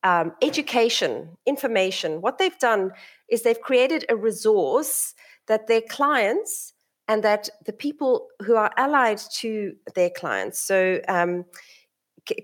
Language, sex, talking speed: English, female, 130 wpm